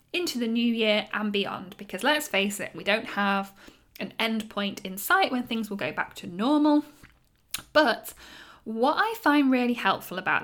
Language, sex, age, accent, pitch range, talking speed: English, female, 10-29, British, 205-260 Hz, 185 wpm